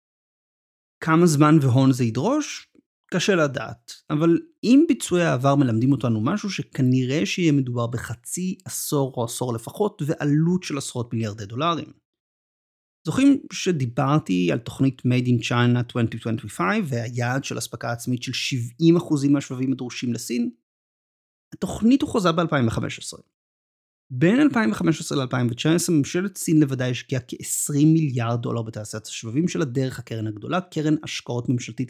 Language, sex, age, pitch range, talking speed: Hebrew, male, 30-49, 120-155 Hz, 125 wpm